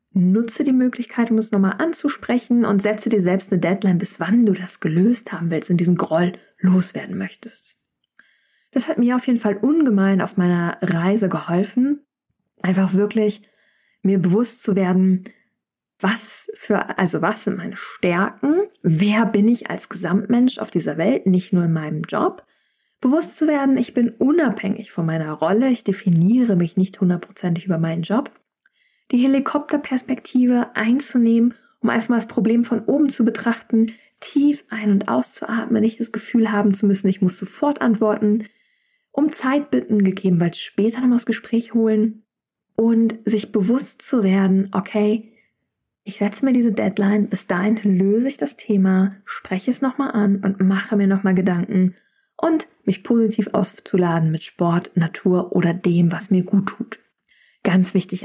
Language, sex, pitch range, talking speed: German, female, 190-240 Hz, 160 wpm